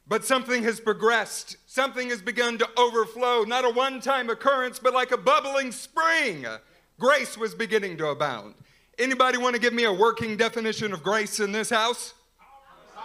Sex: male